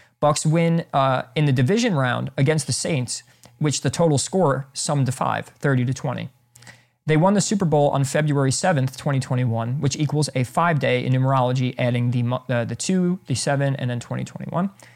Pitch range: 125-155 Hz